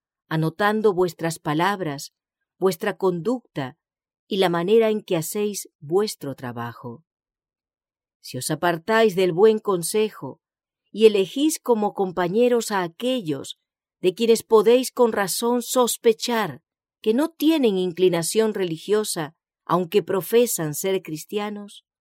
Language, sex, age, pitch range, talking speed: English, female, 50-69, 165-225 Hz, 110 wpm